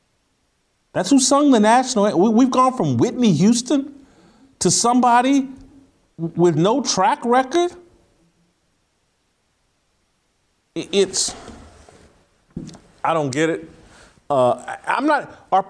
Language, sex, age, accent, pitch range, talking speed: English, male, 40-59, American, 125-200 Hz, 95 wpm